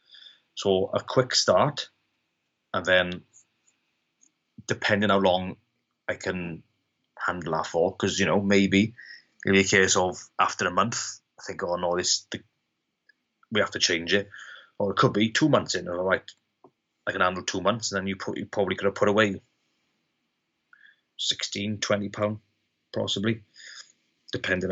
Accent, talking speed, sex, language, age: British, 160 wpm, male, English, 30-49